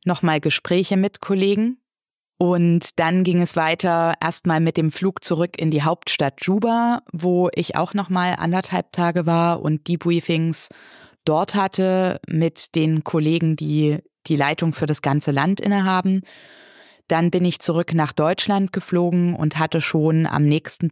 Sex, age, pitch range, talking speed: female, 20-39, 150-180 Hz, 150 wpm